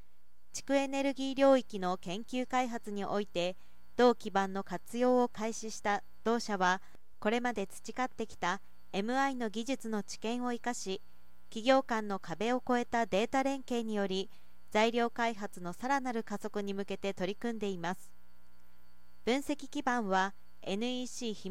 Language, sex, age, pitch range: Japanese, female, 40-59, 190-250 Hz